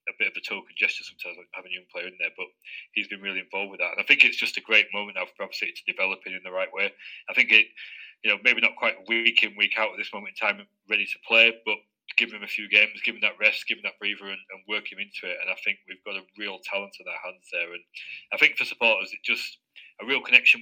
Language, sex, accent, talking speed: English, male, British, 295 wpm